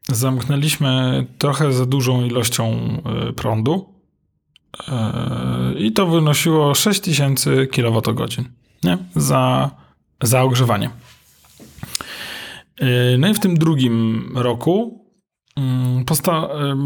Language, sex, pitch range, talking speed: Polish, male, 125-160 Hz, 80 wpm